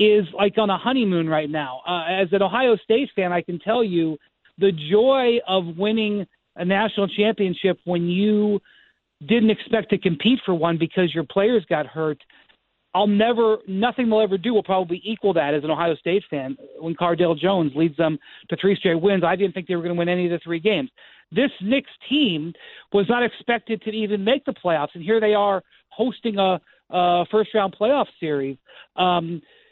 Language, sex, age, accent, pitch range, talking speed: English, male, 40-59, American, 170-215 Hz, 195 wpm